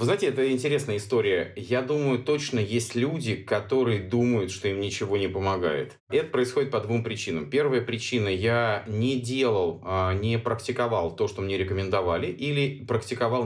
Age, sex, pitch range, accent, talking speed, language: 30-49, male, 100-125 Hz, native, 160 wpm, Russian